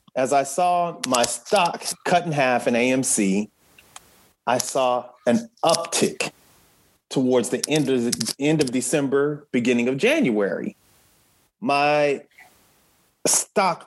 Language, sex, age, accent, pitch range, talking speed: English, male, 30-49, American, 130-200 Hz, 110 wpm